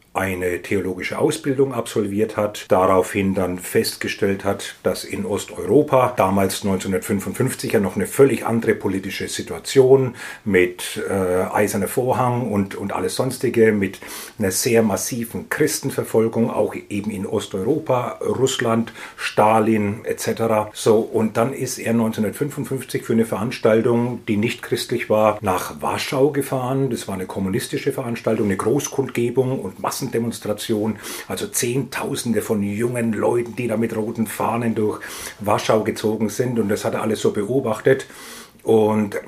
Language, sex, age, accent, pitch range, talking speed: German, male, 40-59, German, 95-120 Hz, 135 wpm